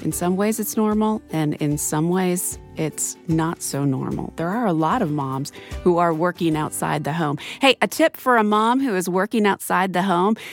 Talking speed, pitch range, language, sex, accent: 210 wpm, 155-215 Hz, English, female, American